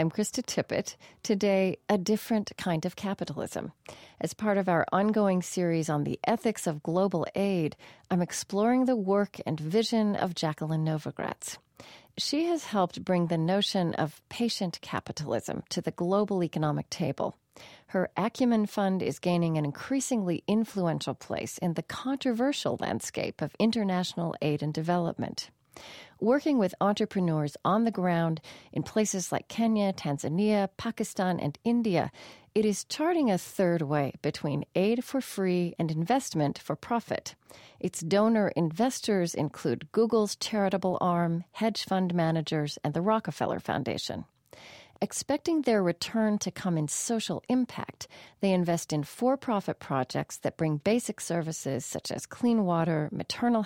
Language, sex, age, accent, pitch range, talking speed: English, female, 40-59, American, 155-215 Hz, 140 wpm